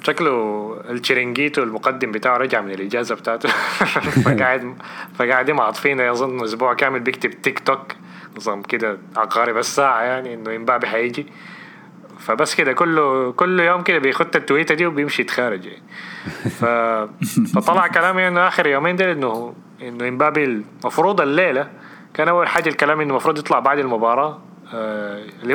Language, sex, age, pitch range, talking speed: Arabic, male, 20-39, 115-150 Hz, 135 wpm